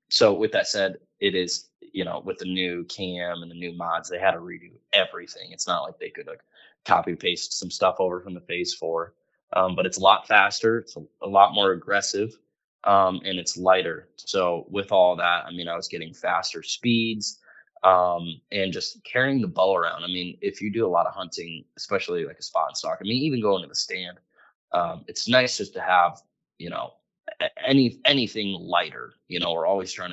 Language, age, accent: English, 20-39, American